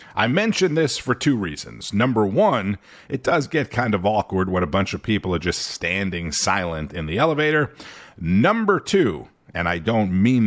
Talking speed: 185 wpm